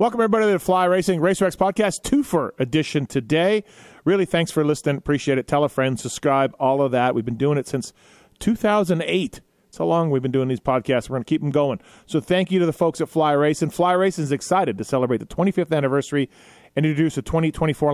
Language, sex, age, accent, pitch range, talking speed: English, male, 30-49, American, 140-170 Hz, 215 wpm